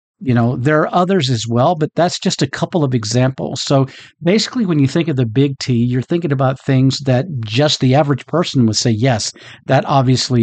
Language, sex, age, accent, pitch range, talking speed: English, male, 50-69, American, 125-160 Hz, 215 wpm